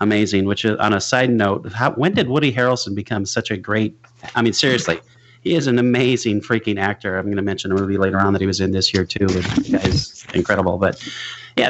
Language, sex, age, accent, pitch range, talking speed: English, male, 30-49, American, 100-120 Hz, 230 wpm